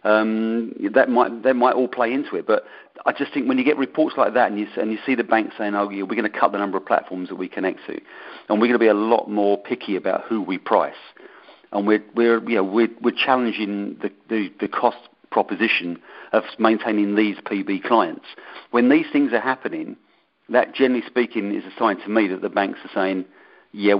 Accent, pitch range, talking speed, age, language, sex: British, 100-125 Hz, 230 wpm, 40-59, English, male